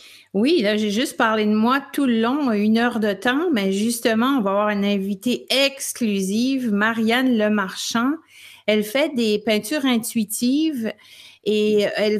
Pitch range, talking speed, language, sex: 215-275 Hz, 150 wpm, French, female